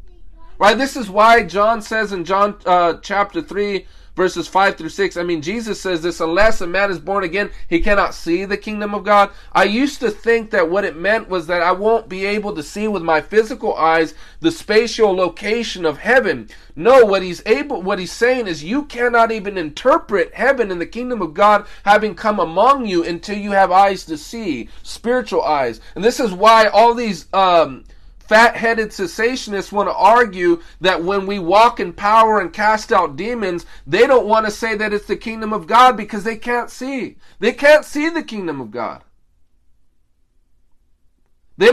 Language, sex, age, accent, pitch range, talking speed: English, male, 40-59, American, 185-240 Hz, 190 wpm